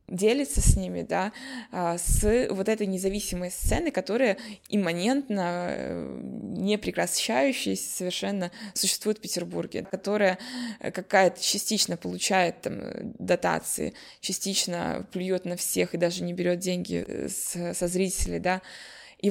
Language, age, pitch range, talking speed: Russian, 20-39, 180-220 Hz, 110 wpm